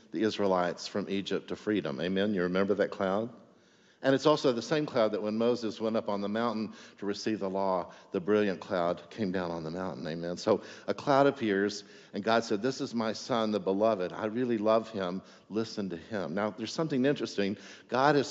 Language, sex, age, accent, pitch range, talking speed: English, male, 50-69, American, 100-125 Hz, 210 wpm